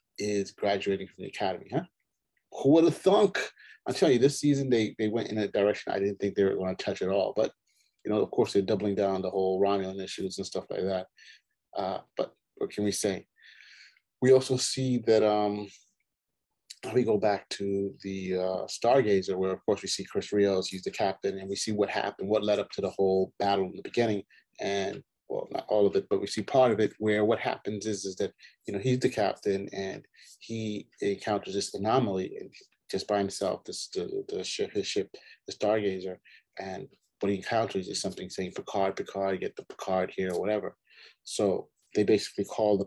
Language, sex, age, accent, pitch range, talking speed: English, male, 30-49, American, 95-120 Hz, 210 wpm